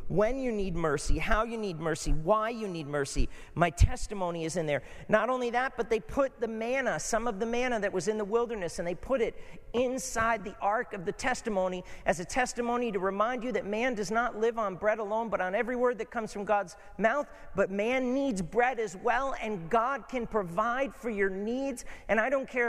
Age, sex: 40-59, male